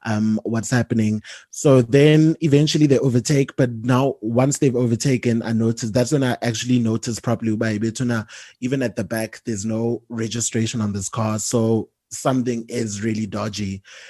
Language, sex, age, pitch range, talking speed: English, male, 20-39, 110-125 Hz, 160 wpm